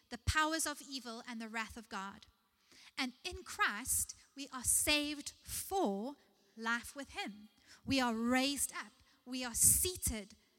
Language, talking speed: English, 145 wpm